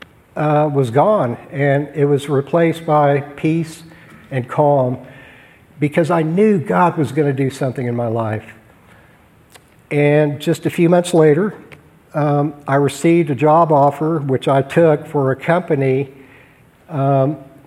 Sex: male